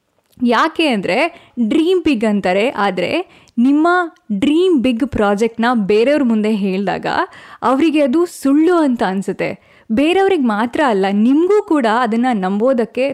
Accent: native